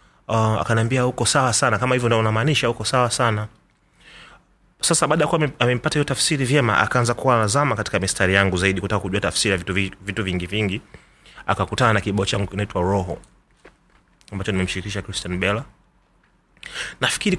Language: Swahili